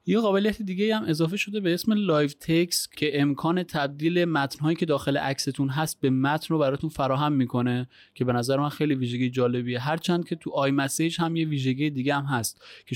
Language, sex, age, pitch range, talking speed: Persian, male, 30-49, 130-160 Hz, 205 wpm